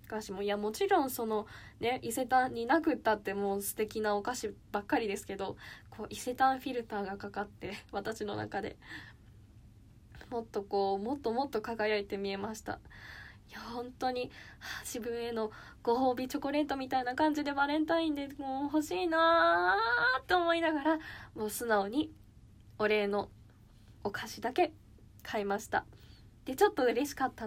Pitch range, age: 210-305 Hz, 10-29